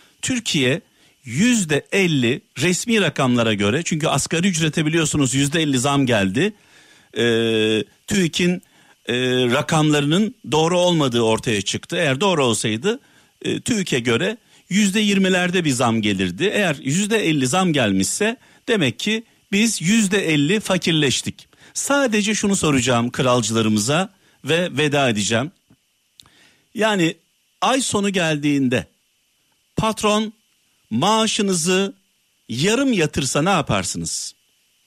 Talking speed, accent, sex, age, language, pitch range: 95 wpm, native, male, 50-69, Turkish, 130-205 Hz